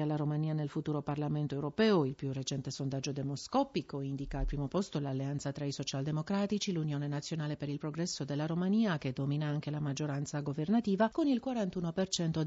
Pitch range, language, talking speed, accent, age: 140-175 Hz, Italian, 170 wpm, native, 50-69